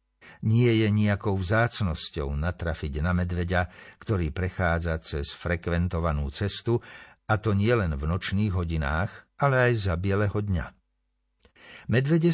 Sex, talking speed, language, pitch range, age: male, 115 wpm, Slovak, 85-115 Hz, 60-79